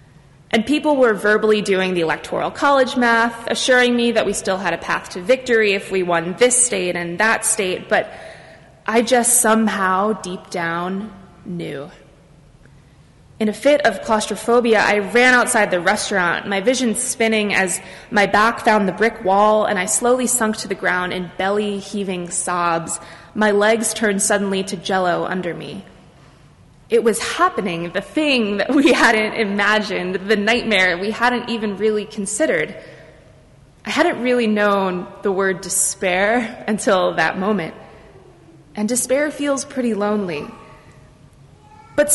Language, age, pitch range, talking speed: English, 20-39, 185-235 Hz, 150 wpm